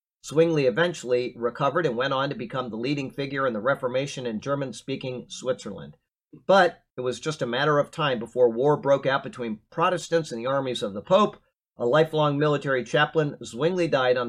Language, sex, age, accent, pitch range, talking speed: English, male, 50-69, American, 125-160 Hz, 185 wpm